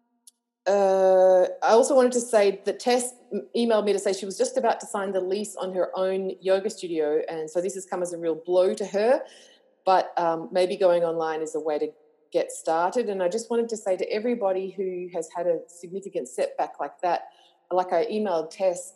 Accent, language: Australian, English